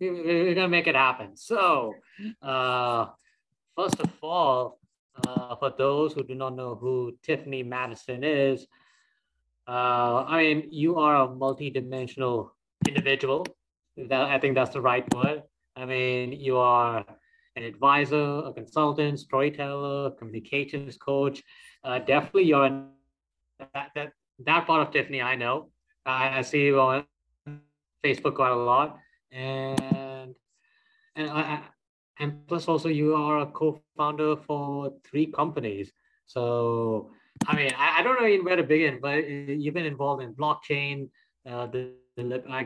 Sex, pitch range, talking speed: male, 125-150 Hz, 145 wpm